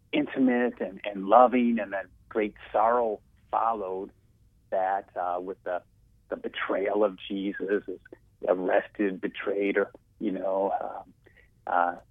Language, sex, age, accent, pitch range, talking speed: English, male, 30-49, American, 100-115 Hz, 125 wpm